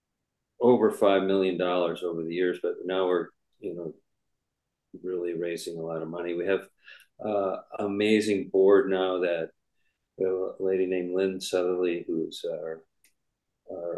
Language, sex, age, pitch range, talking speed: English, male, 50-69, 90-110 Hz, 150 wpm